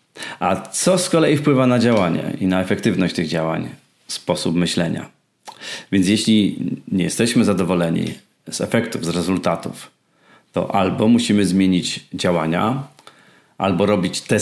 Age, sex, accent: 40-59, male, native